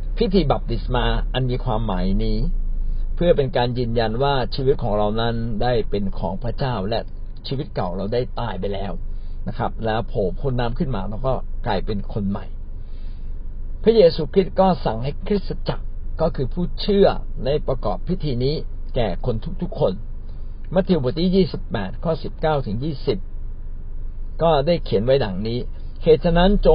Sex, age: male, 60-79